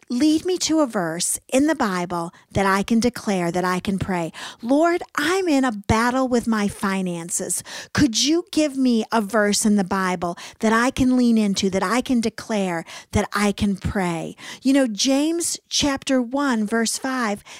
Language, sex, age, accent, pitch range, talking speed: English, female, 50-69, American, 205-280 Hz, 180 wpm